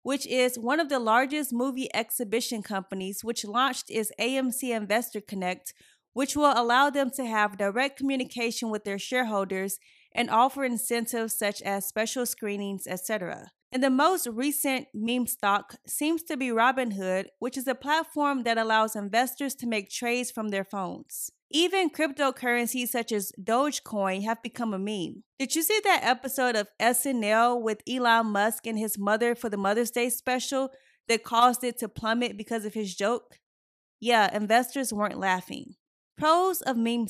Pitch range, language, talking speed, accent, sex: 210-265 Hz, English, 160 wpm, American, female